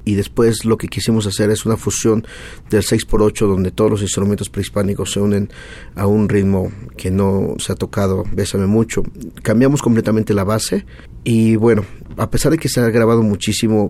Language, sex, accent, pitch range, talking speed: Spanish, male, Mexican, 100-115 Hz, 180 wpm